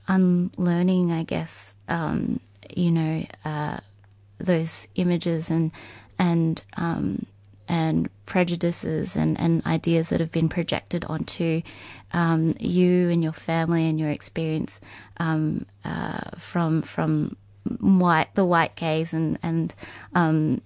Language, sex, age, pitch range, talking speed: English, female, 20-39, 115-175 Hz, 120 wpm